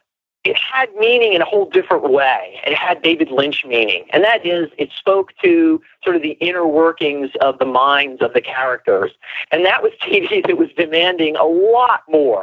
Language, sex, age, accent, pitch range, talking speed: English, male, 40-59, American, 140-200 Hz, 195 wpm